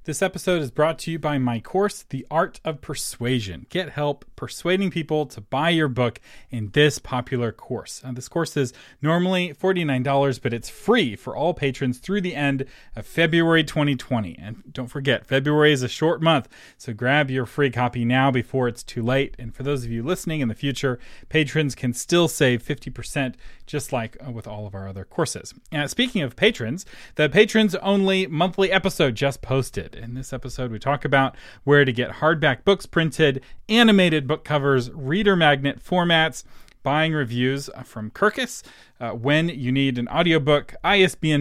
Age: 30-49